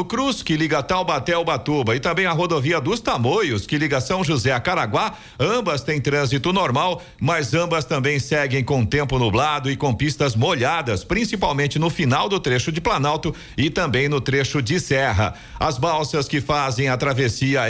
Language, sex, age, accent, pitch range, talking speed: Portuguese, male, 50-69, Brazilian, 130-165 Hz, 175 wpm